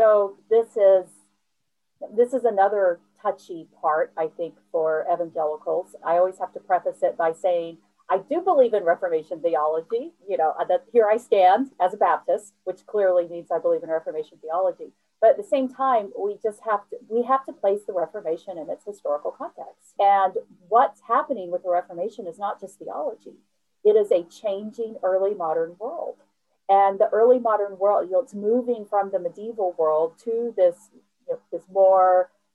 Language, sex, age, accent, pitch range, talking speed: English, female, 40-59, American, 175-235 Hz, 180 wpm